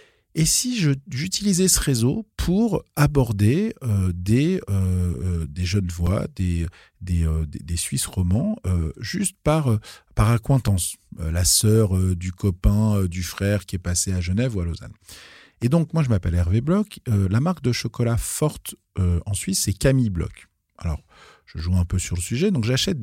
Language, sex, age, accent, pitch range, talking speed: French, male, 40-59, French, 95-150 Hz, 190 wpm